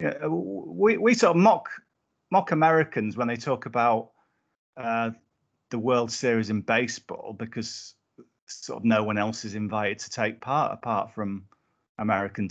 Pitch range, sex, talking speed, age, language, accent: 110-145 Hz, male, 160 wpm, 40-59, English, British